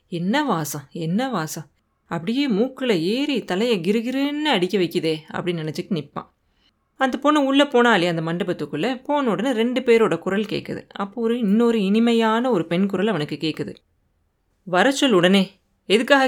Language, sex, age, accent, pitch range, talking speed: Tamil, female, 20-39, native, 170-235 Hz, 145 wpm